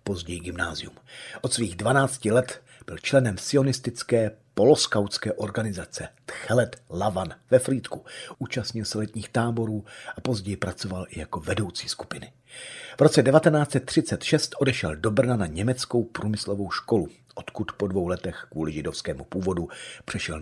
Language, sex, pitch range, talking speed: Czech, male, 95-125 Hz, 130 wpm